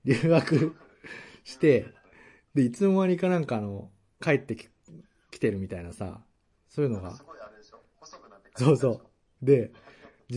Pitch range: 100-130 Hz